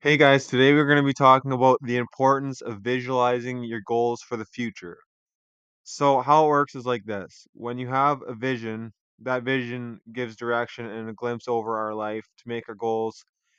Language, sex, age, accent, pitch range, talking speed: English, male, 20-39, American, 115-130 Hz, 195 wpm